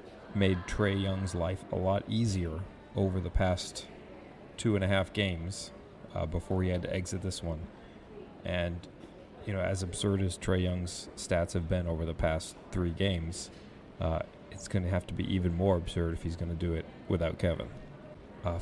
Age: 40-59